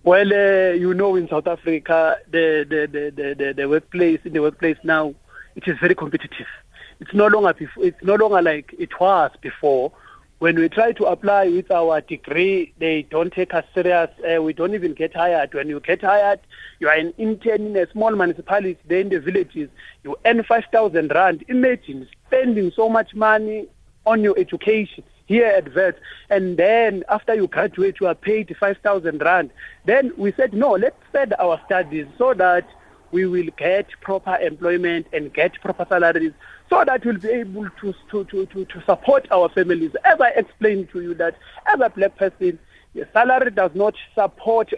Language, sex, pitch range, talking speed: English, male, 170-220 Hz, 185 wpm